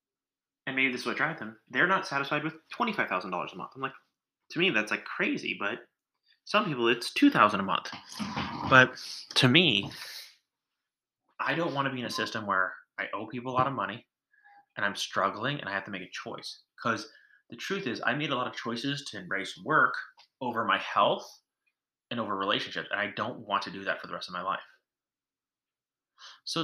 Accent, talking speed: American, 205 wpm